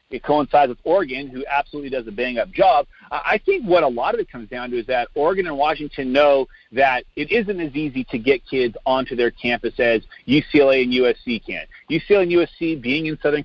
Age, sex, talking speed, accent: 40-59, male, 220 wpm, American